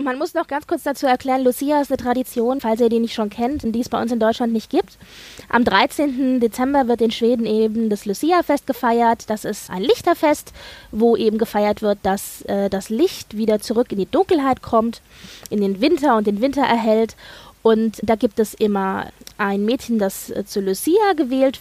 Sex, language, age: female, German, 20-39